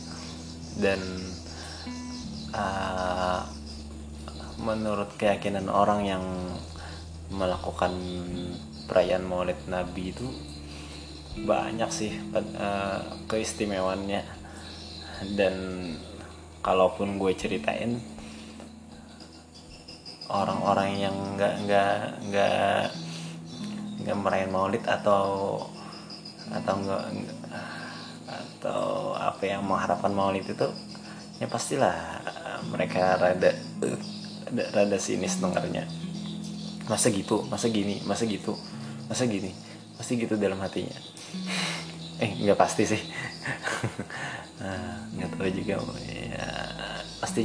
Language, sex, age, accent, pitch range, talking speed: Indonesian, male, 20-39, native, 80-110 Hz, 85 wpm